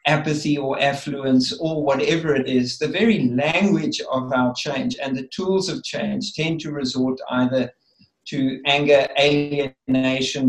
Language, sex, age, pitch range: English, male, 50-69, 130-165 Hz